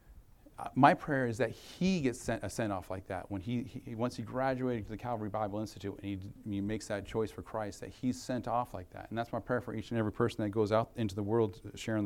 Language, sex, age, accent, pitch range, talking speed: English, male, 40-59, American, 100-120 Hz, 265 wpm